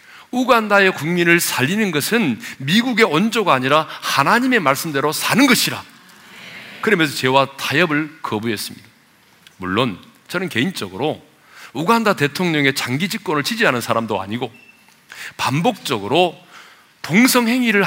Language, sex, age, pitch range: Korean, male, 40-59, 130-225 Hz